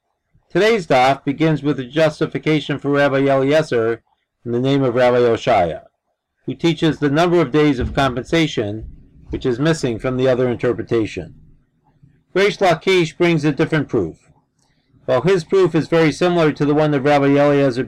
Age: 40-59